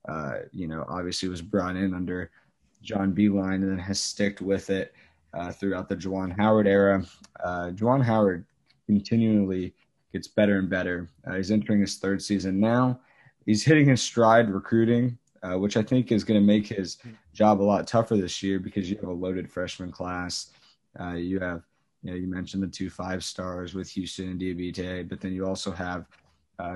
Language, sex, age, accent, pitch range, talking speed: English, male, 20-39, American, 90-105 Hz, 195 wpm